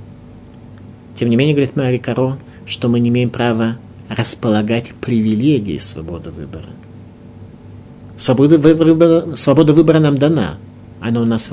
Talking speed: 125 wpm